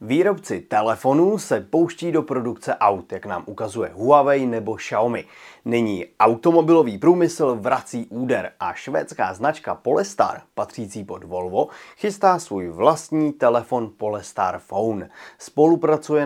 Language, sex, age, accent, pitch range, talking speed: Czech, male, 30-49, native, 120-160 Hz, 120 wpm